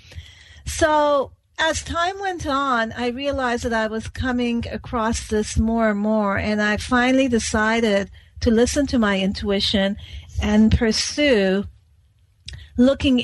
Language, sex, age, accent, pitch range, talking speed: English, female, 50-69, American, 195-235 Hz, 125 wpm